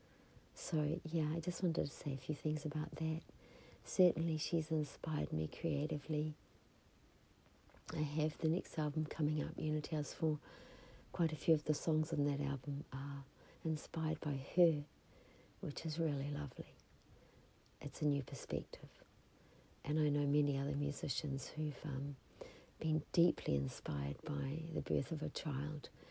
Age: 60-79